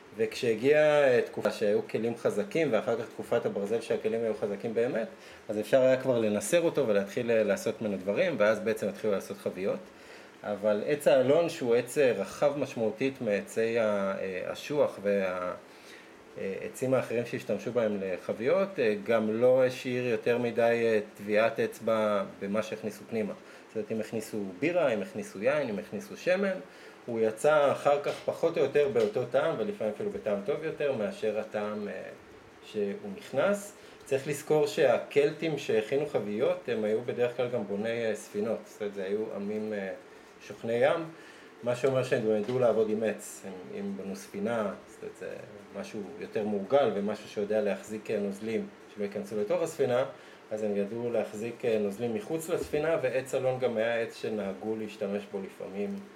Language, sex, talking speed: Hebrew, male, 150 wpm